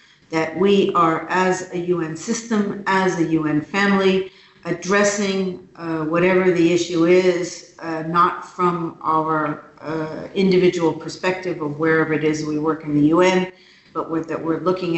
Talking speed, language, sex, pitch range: 150 wpm, English, female, 160-185 Hz